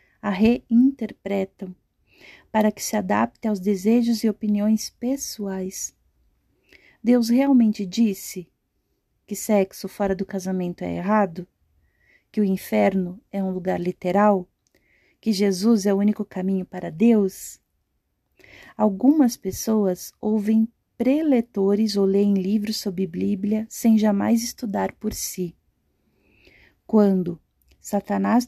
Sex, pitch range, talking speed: female, 195-230 Hz, 110 wpm